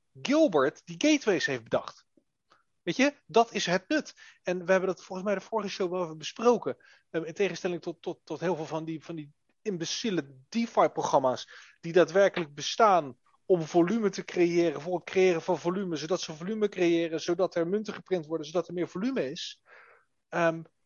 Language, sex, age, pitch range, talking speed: Dutch, male, 30-49, 160-210 Hz, 185 wpm